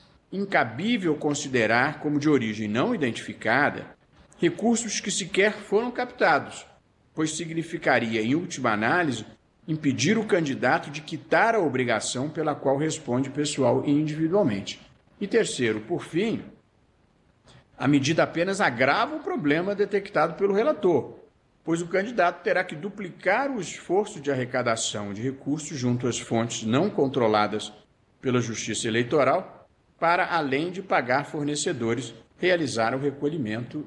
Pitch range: 120-180 Hz